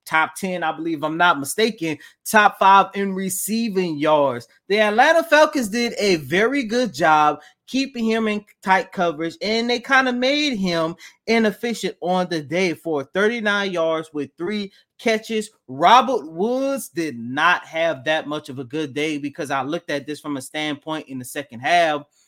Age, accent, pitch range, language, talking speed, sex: 30-49, American, 145-195 Hz, English, 170 wpm, male